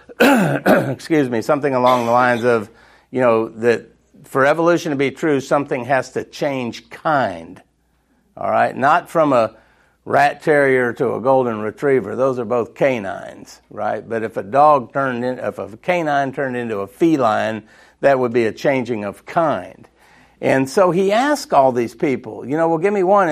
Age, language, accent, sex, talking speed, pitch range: 50-69, English, American, male, 180 wpm, 125-170 Hz